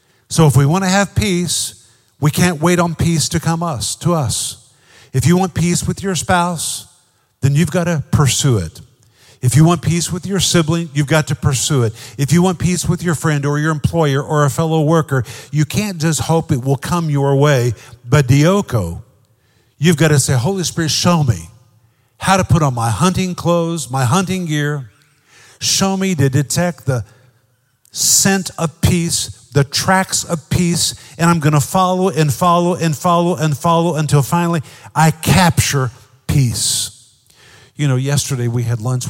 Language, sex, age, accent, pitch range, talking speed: English, male, 50-69, American, 125-165 Hz, 180 wpm